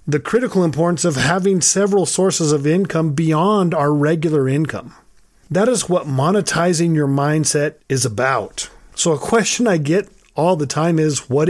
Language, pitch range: English, 140-185 Hz